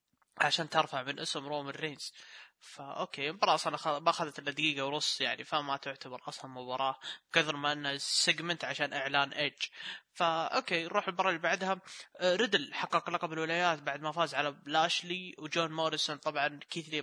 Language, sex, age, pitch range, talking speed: Arabic, male, 20-39, 150-180 Hz, 160 wpm